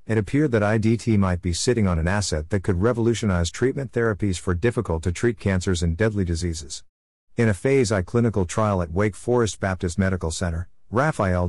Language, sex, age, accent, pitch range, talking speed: English, male, 50-69, American, 90-115 Hz, 170 wpm